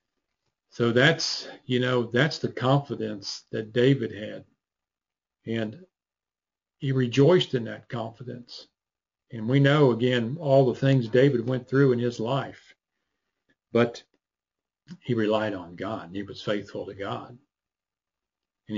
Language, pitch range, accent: English, 110-135 Hz, American